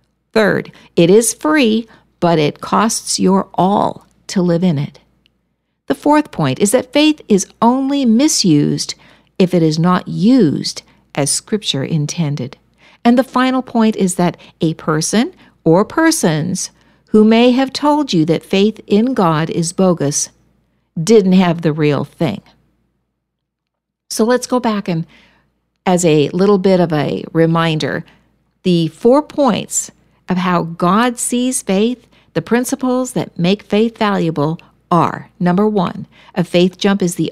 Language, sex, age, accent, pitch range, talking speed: English, female, 60-79, American, 165-235 Hz, 145 wpm